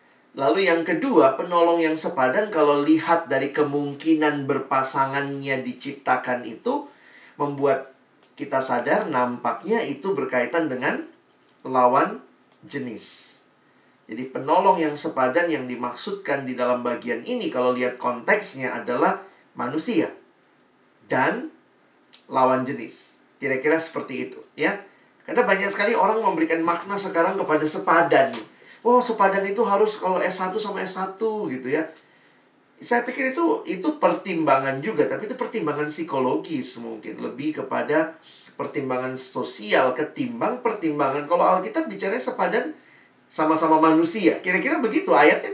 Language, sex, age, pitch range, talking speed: Indonesian, male, 40-59, 135-185 Hz, 120 wpm